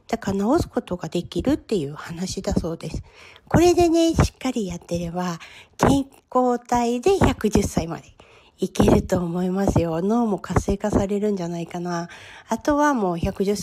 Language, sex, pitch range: Japanese, female, 175-220 Hz